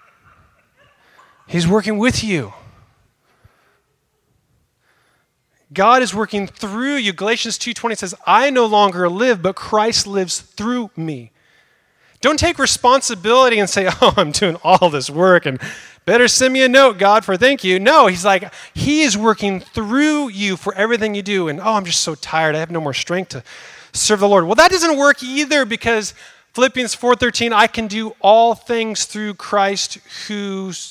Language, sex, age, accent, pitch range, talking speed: English, male, 30-49, American, 170-235 Hz, 165 wpm